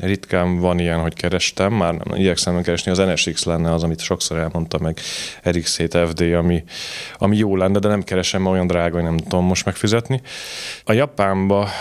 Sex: male